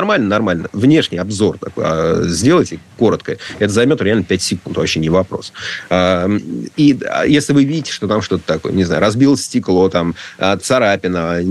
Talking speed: 145 wpm